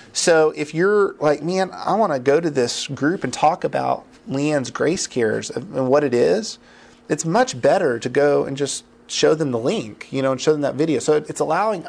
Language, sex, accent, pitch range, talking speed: English, male, American, 130-155 Hz, 215 wpm